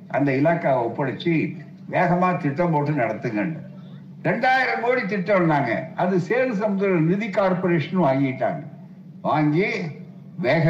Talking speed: 95 wpm